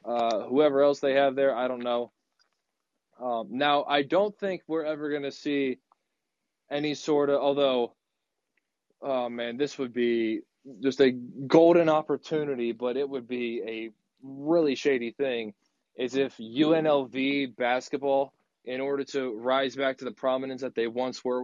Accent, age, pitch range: American, 20-39, 125-150 Hz